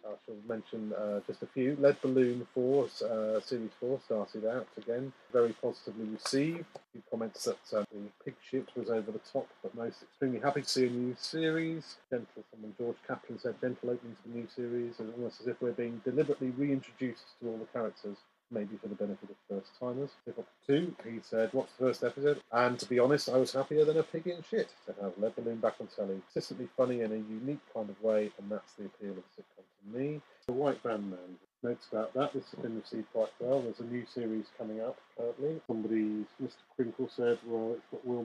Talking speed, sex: 215 wpm, male